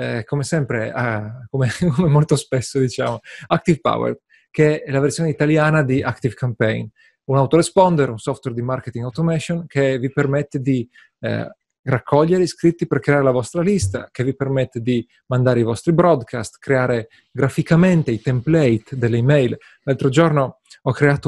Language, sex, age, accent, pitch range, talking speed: Italian, male, 30-49, native, 125-155 Hz, 160 wpm